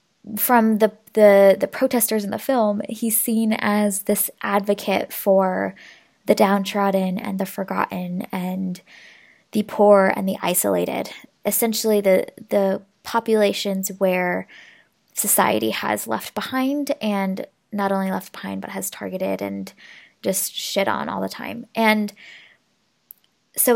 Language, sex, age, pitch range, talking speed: English, female, 20-39, 190-225 Hz, 130 wpm